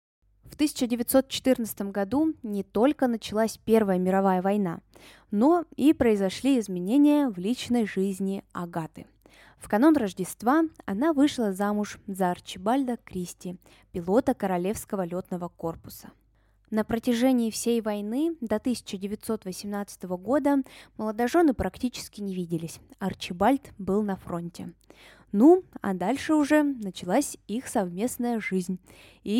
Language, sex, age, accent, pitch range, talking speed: Russian, female, 20-39, native, 185-250 Hz, 110 wpm